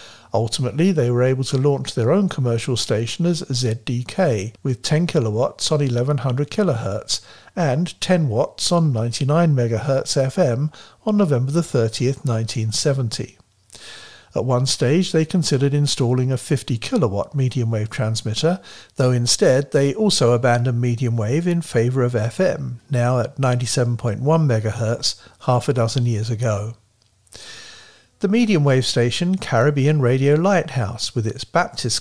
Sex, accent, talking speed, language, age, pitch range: male, British, 115 wpm, English, 60-79, 115-150 Hz